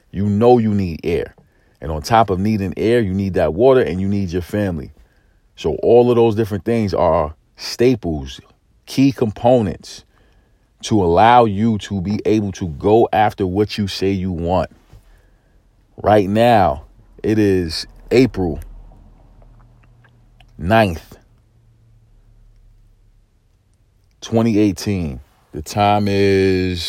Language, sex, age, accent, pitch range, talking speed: English, male, 40-59, American, 95-110 Hz, 120 wpm